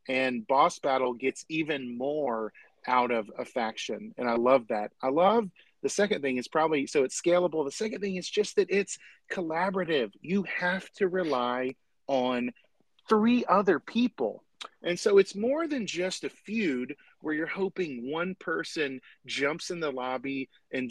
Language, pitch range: English, 135-195 Hz